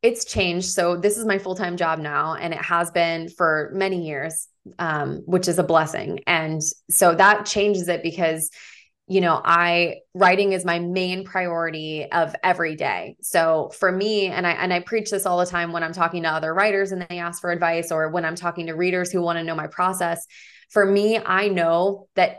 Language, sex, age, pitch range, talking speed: English, female, 20-39, 170-190 Hz, 210 wpm